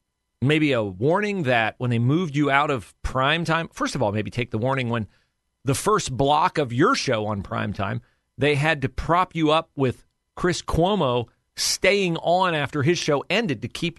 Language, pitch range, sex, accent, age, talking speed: English, 105-155 Hz, male, American, 40-59, 190 wpm